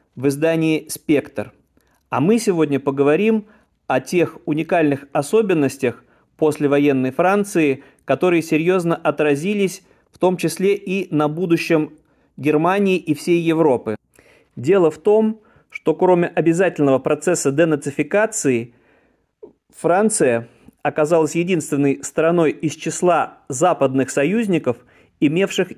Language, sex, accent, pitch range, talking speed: Russian, male, native, 140-175 Hz, 105 wpm